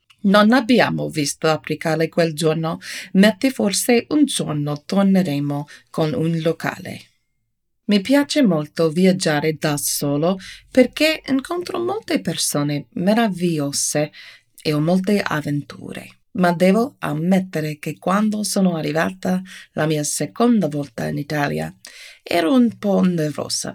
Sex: female